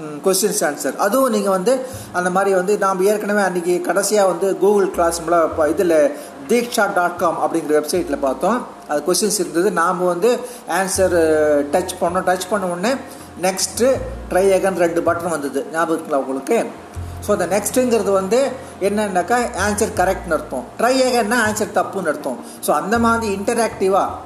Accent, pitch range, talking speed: native, 165-210 Hz, 145 wpm